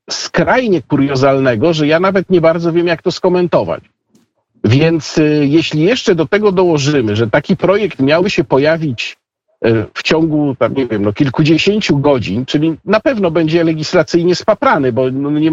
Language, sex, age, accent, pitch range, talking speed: Polish, male, 50-69, native, 135-170 Hz, 135 wpm